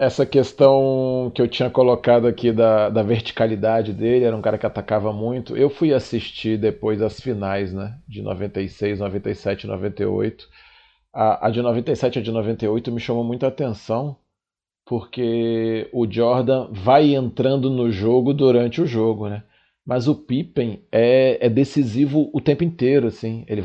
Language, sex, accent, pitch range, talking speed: Portuguese, male, Brazilian, 110-135 Hz, 155 wpm